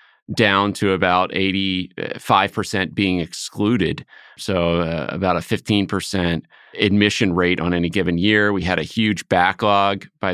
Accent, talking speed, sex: American, 135 wpm, male